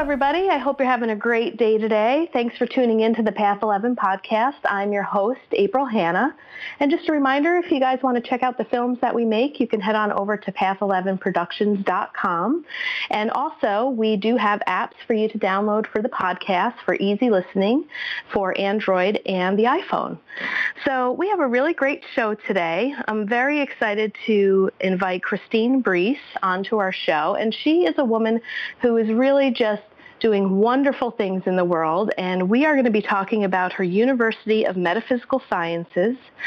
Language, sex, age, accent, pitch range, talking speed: English, female, 40-59, American, 190-250 Hz, 185 wpm